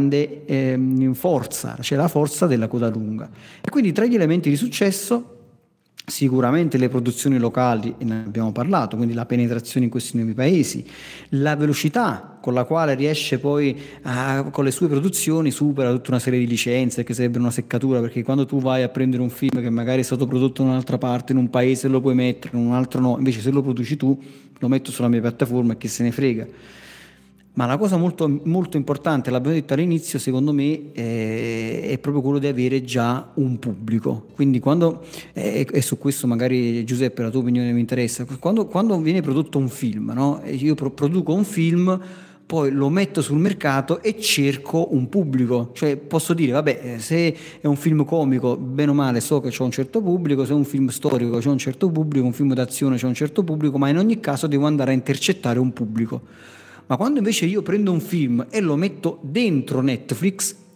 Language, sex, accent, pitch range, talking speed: Italian, male, native, 125-160 Hz, 200 wpm